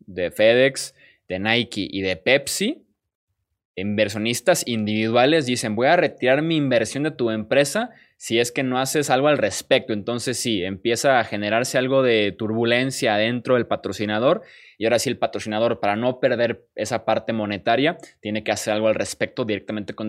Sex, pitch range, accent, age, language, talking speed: male, 105-130 Hz, Mexican, 20-39, Spanish, 165 wpm